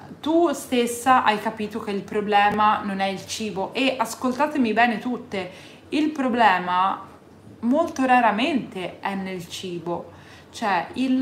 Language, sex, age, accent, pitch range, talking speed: Italian, female, 20-39, native, 200-255 Hz, 130 wpm